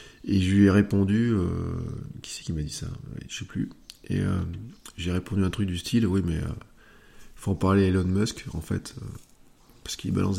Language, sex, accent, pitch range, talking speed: French, male, French, 90-105 Hz, 220 wpm